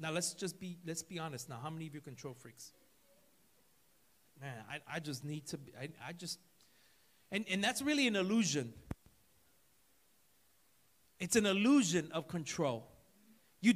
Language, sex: English, male